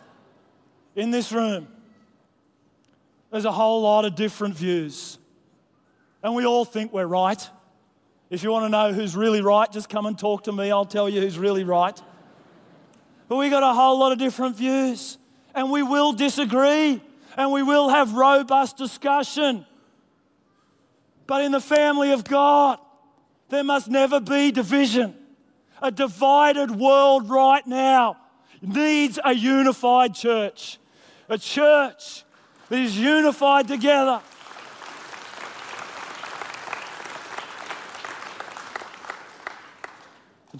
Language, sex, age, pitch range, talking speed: English, male, 30-49, 210-275 Hz, 120 wpm